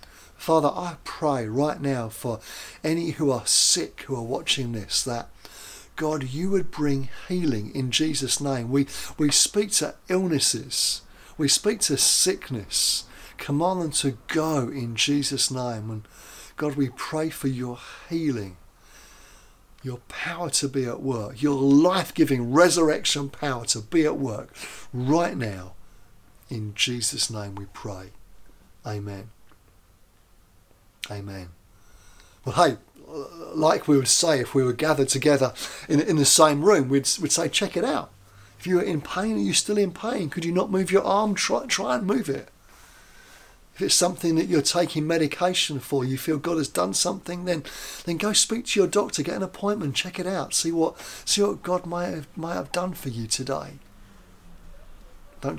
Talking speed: 165 wpm